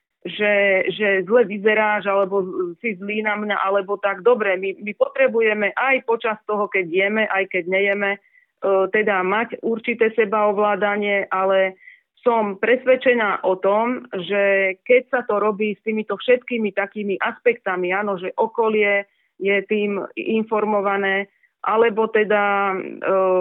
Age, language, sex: 30-49, Slovak, female